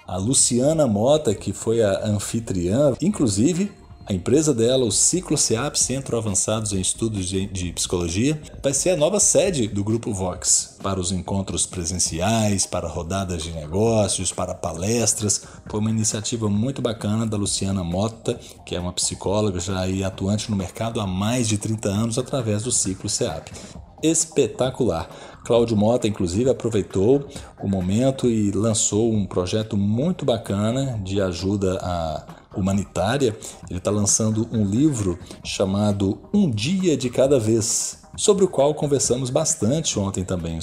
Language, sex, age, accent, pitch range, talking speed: Portuguese, male, 40-59, Brazilian, 95-120 Hz, 145 wpm